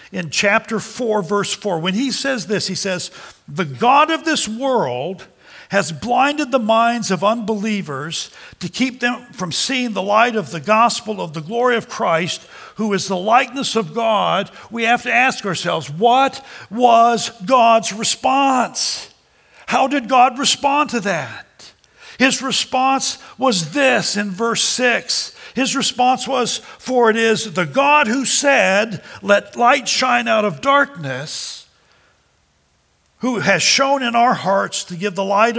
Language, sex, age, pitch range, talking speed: English, male, 50-69, 195-255 Hz, 155 wpm